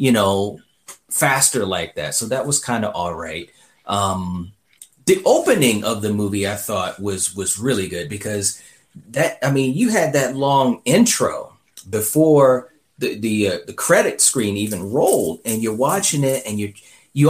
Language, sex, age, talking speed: English, male, 30-49, 165 wpm